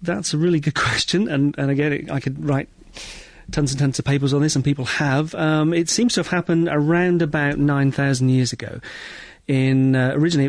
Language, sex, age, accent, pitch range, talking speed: English, male, 40-59, British, 120-145 Hz, 205 wpm